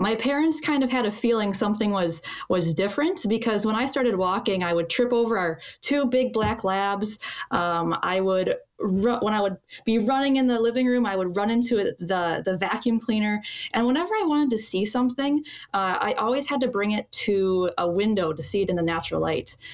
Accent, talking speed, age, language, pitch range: American, 215 wpm, 20-39, English, 185-245 Hz